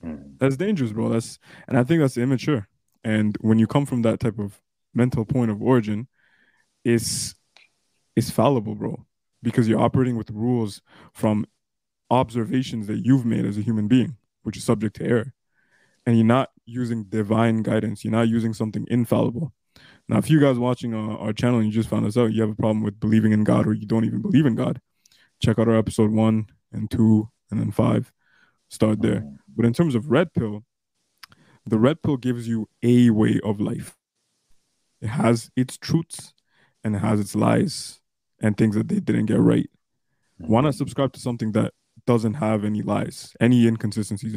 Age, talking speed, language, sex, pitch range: 20-39, 190 wpm, English, male, 110-125 Hz